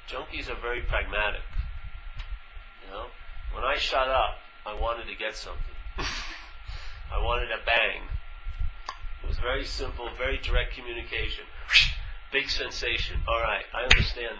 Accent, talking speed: American, 130 wpm